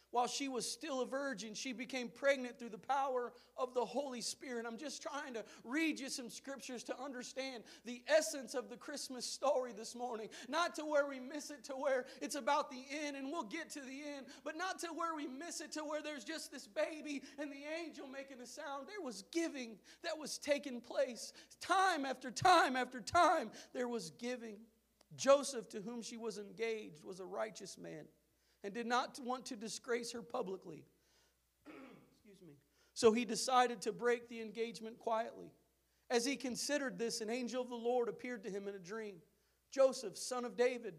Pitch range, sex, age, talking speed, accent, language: 225-280 Hz, male, 40-59, 195 wpm, American, English